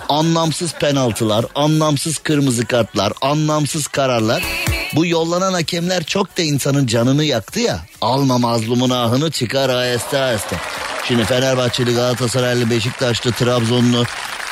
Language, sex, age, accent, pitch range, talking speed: Turkish, male, 50-69, native, 125-155 Hz, 110 wpm